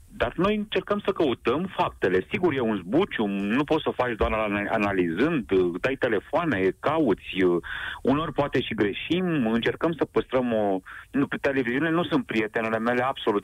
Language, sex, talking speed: Romanian, male, 160 wpm